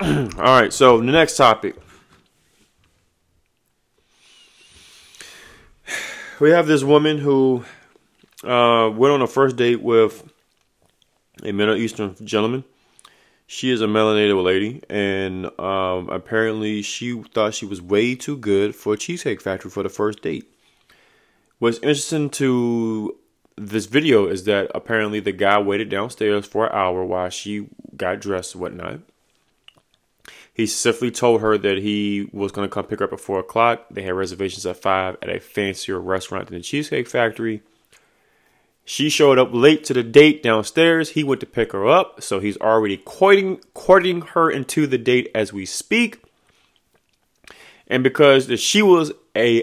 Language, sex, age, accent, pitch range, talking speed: English, male, 20-39, American, 100-125 Hz, 150 wpm